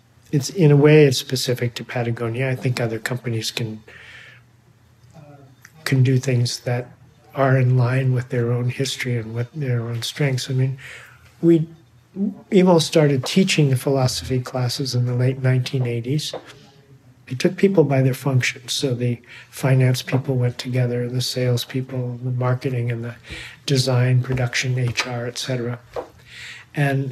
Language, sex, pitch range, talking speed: English, male, 125-140 Hz, 145 wpm